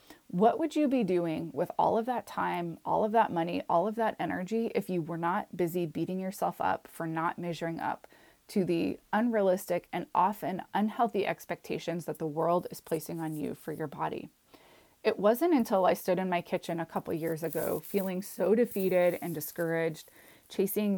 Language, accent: English, American